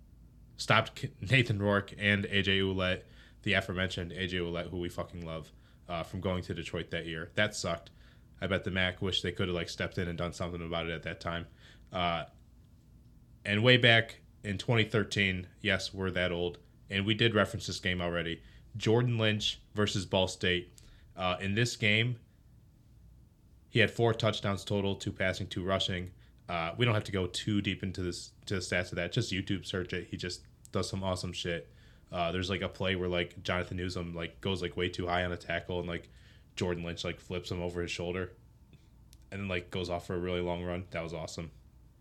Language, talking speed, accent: English, 205 wpm, American